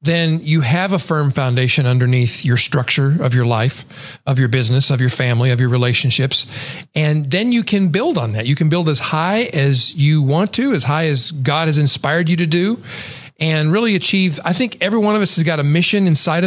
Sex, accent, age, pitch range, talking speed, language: male, American, 40-59, 145-185 Hz, 220 wpm, English